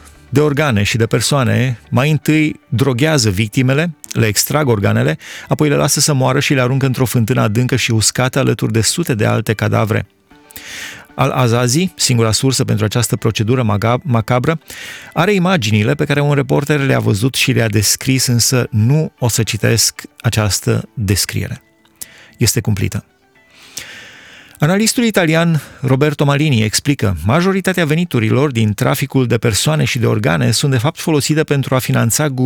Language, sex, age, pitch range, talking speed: Romanian, male, 30-49, 115-145 Hz, 150 wpm